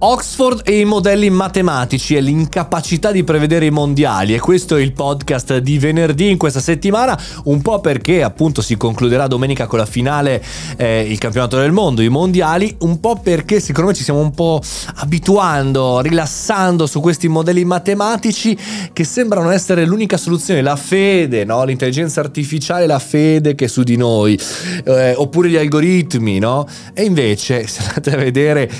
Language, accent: Italian, native